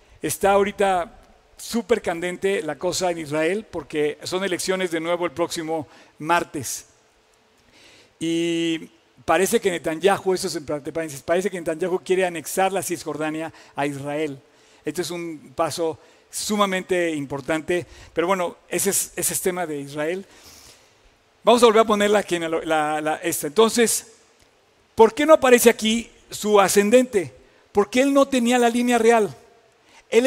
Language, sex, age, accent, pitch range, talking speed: Spanish, male, 50-69, Mexican, 170-225 Hz, 145 wpm